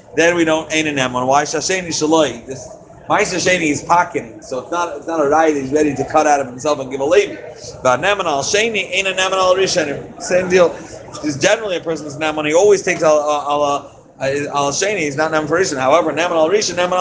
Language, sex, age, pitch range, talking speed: English, male, 30-49, 150-190 Hz, 210 wpm